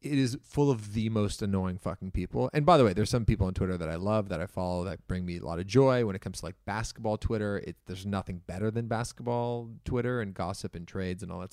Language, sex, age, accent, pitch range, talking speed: English, male, 30-49, American, 95-120 Hz, 265 wpm